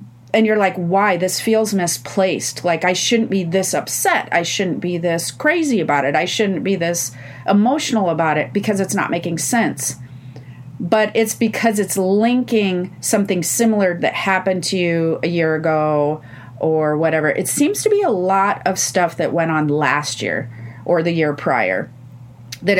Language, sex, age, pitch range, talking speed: English, female, 40-59, 155-195 Hz, 175 wpm